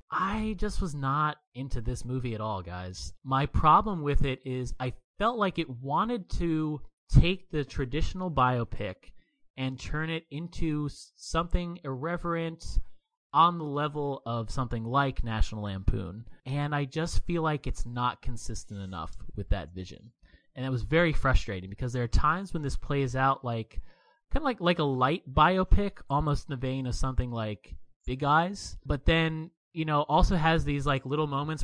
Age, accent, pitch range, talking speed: 30-49, American, 110-150 Hz, 175 wpm